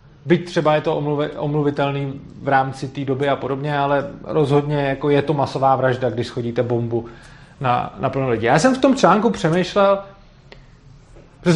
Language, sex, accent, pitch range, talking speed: Czech, male, native, 140-175 Hz, 165 wpm